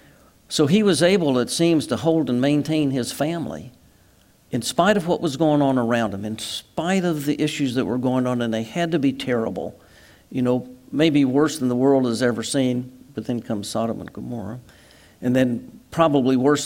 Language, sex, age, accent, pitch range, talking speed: English, male, 60-79, American, 115-140 Hz, 200 wpm